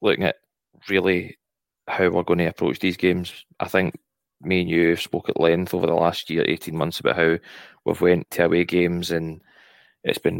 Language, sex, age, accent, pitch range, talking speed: English, male, 20-39, British, 85-95 Hz, 200 wpm